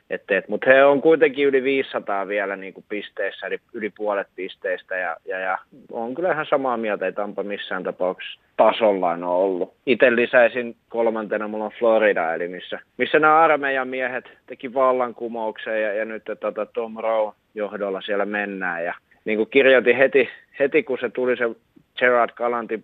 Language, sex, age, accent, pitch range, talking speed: Finnish, male, 30-49, native, 105-120 Hz, 160 wpm